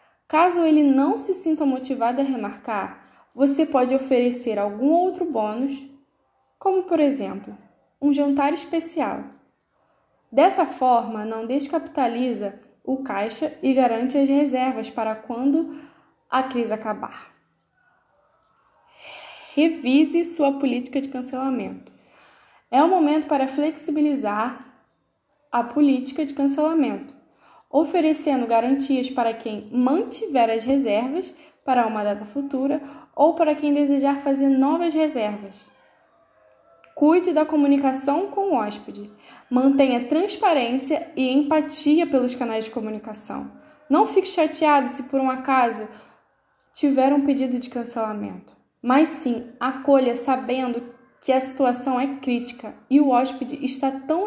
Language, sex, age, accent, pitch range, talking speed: Portuguese, female, 10-29, Brazilian, 245-300 Hz, 120 wpm